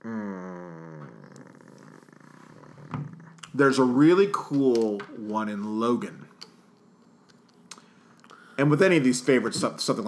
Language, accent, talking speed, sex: English, American, 90 wpm, male